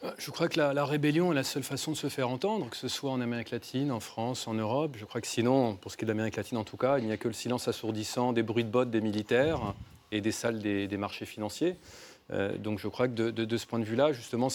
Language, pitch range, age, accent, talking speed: French, 110-135 Hz, 30-49, French, 295 wpm